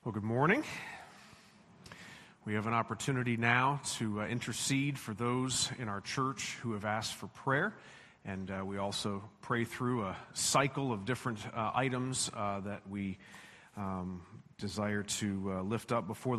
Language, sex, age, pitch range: English, male, 40-59, 105-130 Hz